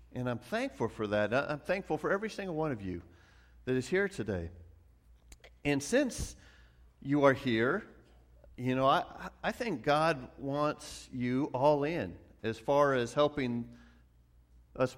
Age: 50-69